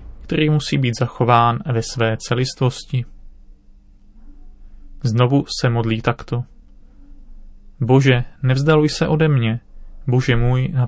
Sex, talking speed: male, 105 wpm